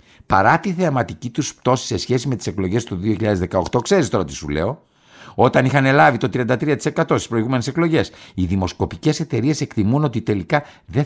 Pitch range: 95-160 Hz